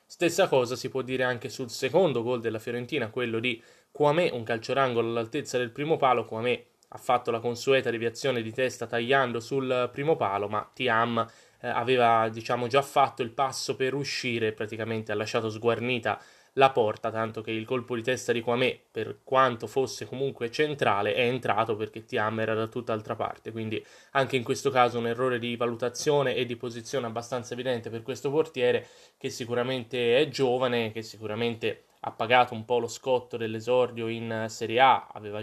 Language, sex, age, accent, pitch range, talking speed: Italian, male, 20-39, native, 115-130 Hz, 175 wpm